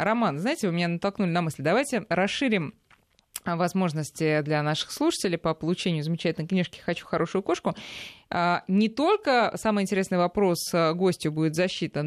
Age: 20-39